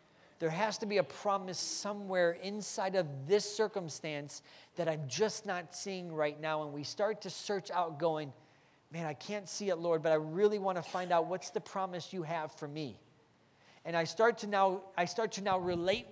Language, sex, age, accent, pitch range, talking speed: English, male, 40-59, American, 165-205 Hz, 205 wpm